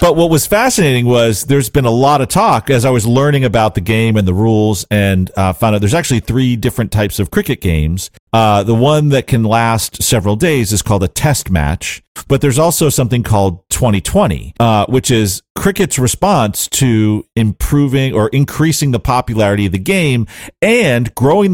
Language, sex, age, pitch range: English, male, 40-59, 100-130 Hz